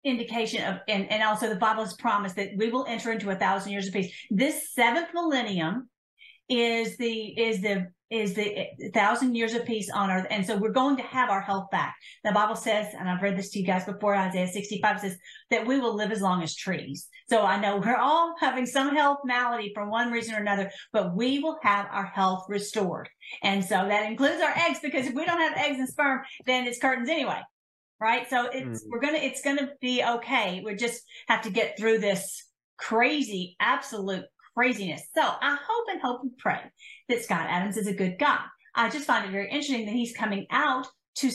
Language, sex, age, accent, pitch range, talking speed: English, female, 40-59, American, 200-265 Hz, 220 wpm